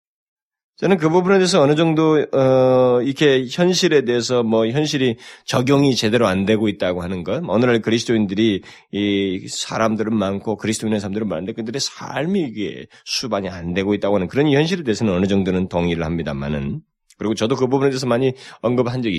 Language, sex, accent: Korean, male, native